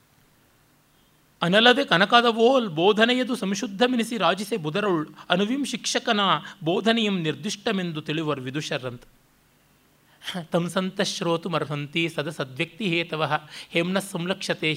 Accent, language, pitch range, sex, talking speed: native, Kannada, 155-210 Hz, male, 75 wpm